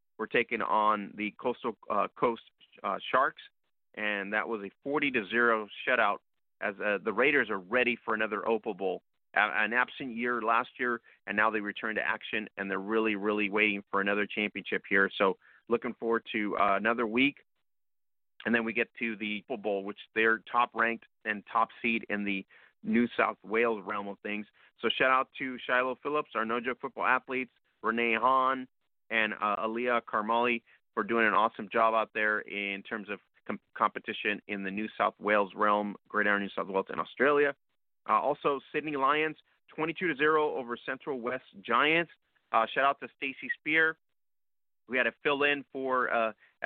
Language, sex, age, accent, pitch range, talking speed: English, male, 30-49, American, 105-130 Hz, 180 wpm